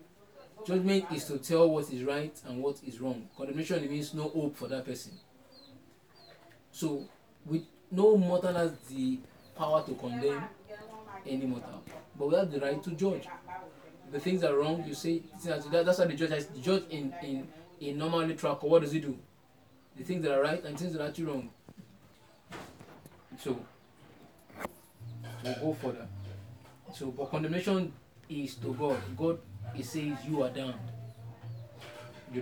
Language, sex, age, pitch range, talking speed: English, male, 20-39, 120-160 Hz, 160 wpm